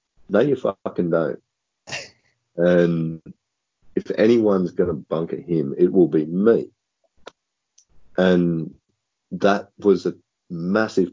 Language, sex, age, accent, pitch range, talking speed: English, male, 40-59, Australian, 80-95 Hz, 110 wpm